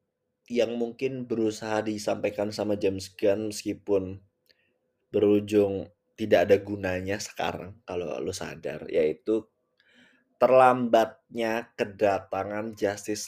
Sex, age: male, 20-39